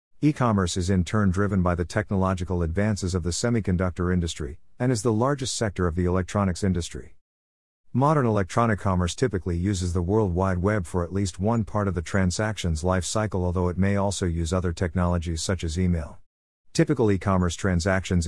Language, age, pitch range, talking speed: English, 50-69, 85-110 Hz, 175 wpm